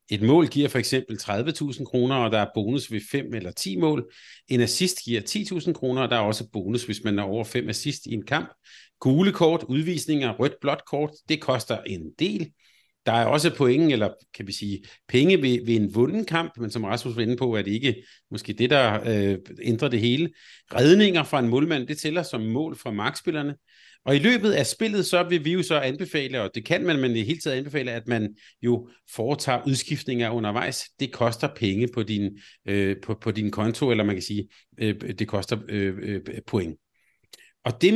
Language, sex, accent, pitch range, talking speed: Danish, male, native, 115-155 Hz, 210 wpm